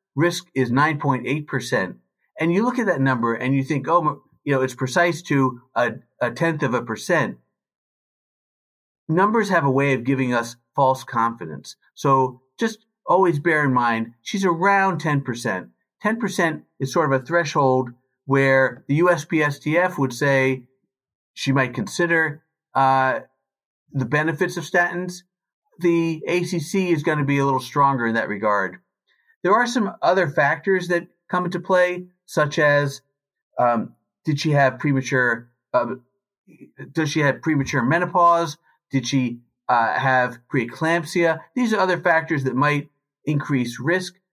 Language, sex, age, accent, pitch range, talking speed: English, male, 50-69, American, 130-175 Hz, 145 wpm